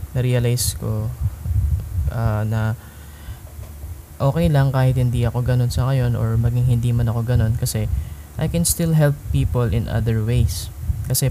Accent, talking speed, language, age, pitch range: native, 150 wpm, Filipino, 20-39, 95-130 Hz